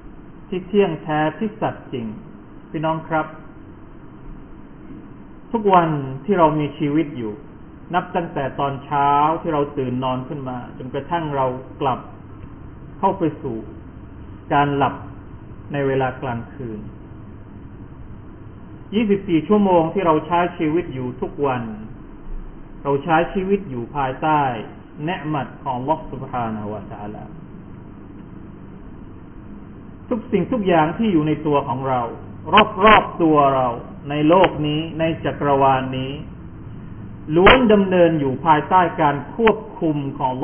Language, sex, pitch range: Thai, male, 125-170 Hz